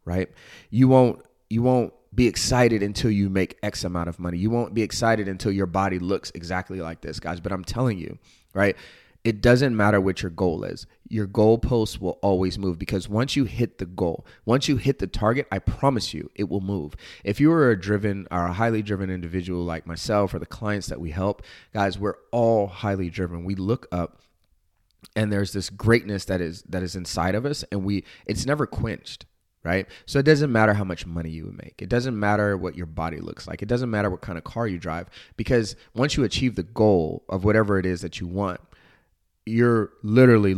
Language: English